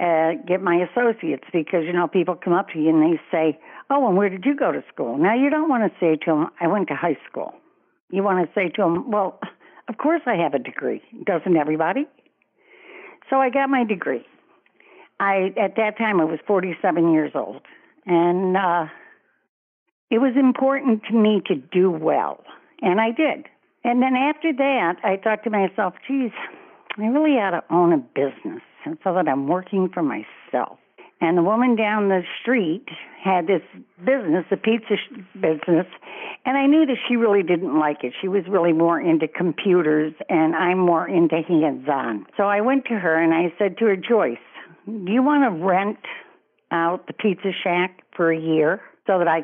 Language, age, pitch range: English, 60-79, 170-245 Hz